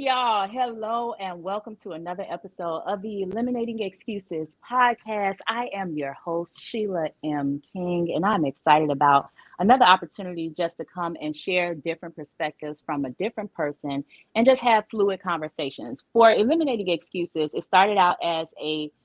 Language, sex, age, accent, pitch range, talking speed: English, female, 30-49, American, 150-195 Hz, 155 wpm